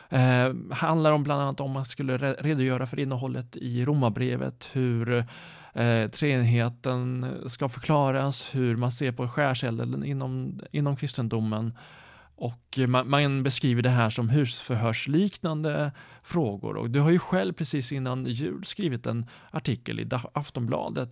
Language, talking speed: Swedish, 140 wpm